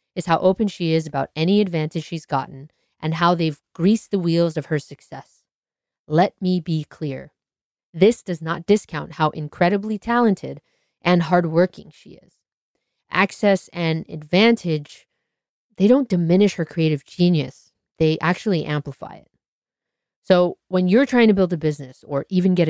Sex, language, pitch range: female, English, 150-200 Hz